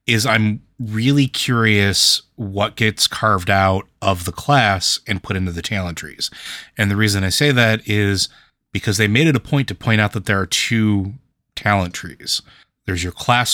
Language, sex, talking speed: English, male, 185 wpm